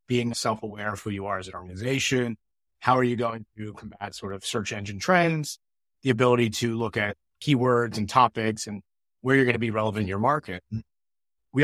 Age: 30-49